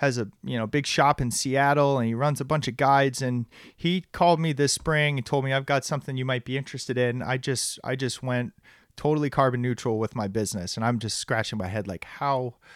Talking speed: 240 wpm